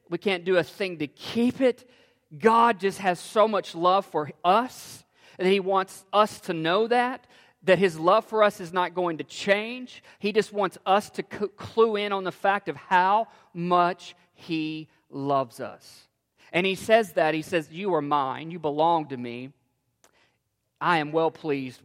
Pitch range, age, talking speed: 130-180 Hz, 40-59, 180 wpm